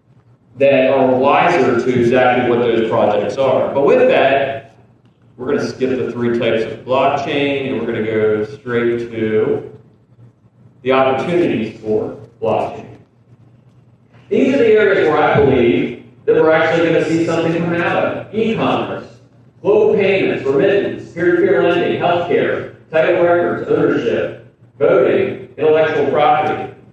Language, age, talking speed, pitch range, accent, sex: English, 40-59, 145 wpm, 120-180 Hz, American, male